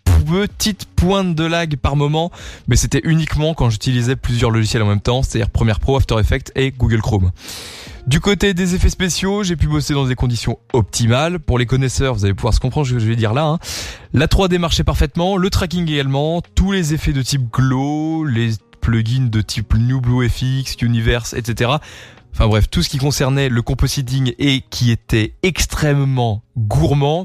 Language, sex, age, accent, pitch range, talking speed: French, male, 20-39, French, 115-155 Hz, 190 wpm